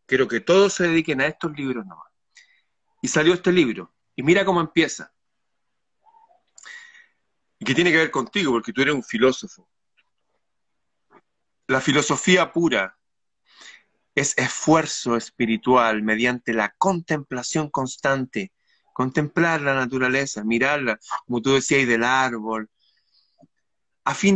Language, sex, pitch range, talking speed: Spanish, male, 130-185 Hz, 120 wpm